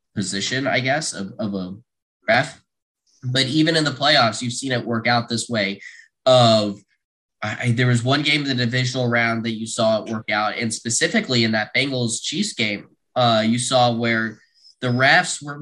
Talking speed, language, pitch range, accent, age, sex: 185 wpm, English, 110-130 Hz, American, 10-29, male